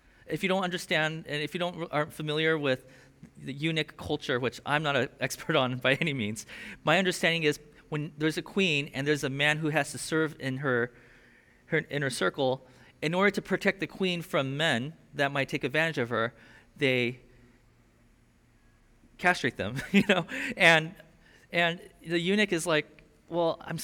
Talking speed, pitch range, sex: 175 wpm, 140-185 Hz, male